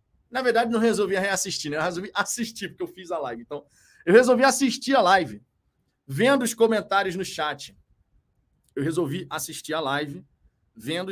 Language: Portuguese